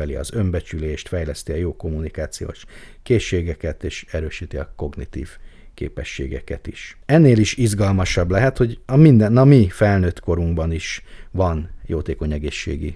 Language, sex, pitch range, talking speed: Hungarian, male, 80-110 Hz, 130 wpm